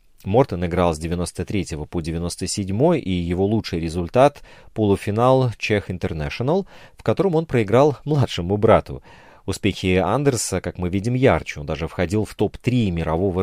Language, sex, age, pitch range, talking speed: Russian, male, 30-49, 90-130 Hz, 140 wpm